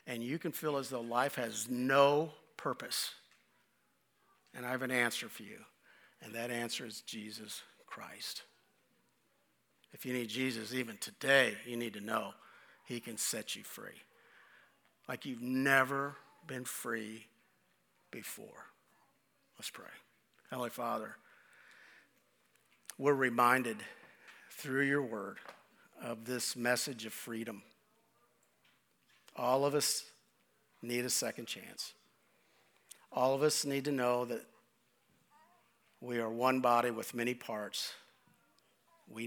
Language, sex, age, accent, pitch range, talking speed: English, male, 50-69, American, 120-135 Hz, 120 wpm